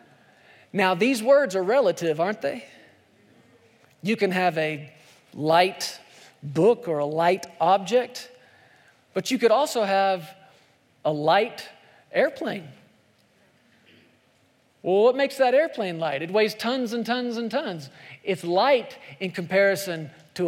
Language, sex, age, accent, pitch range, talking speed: English, male, 40-59, American, 175-235 Hz, 125 wpm